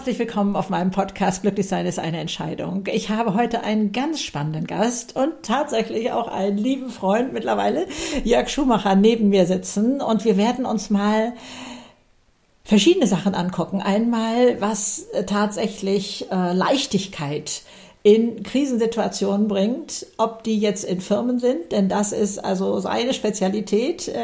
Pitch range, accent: 195-235 Hz, German